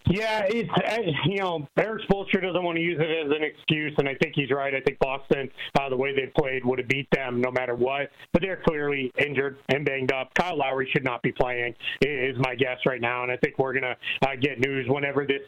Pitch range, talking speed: 135-160 Hz, 245 wpm